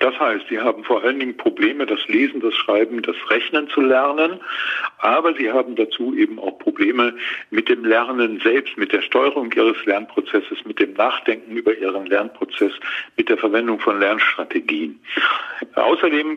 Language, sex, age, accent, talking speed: German, male, 50-69, German, 160 wpm